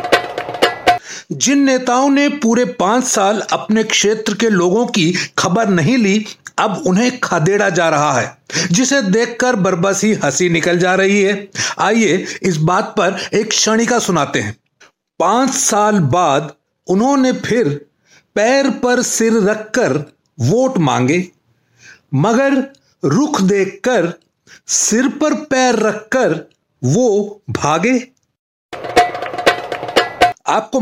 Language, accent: Hindi, native